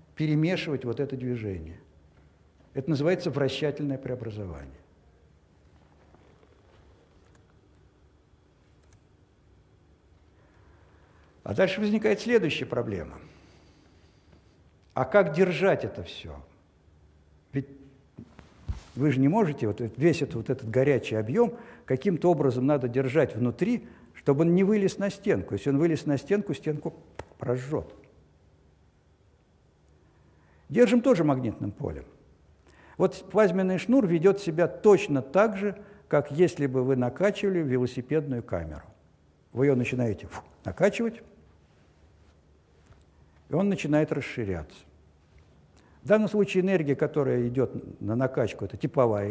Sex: male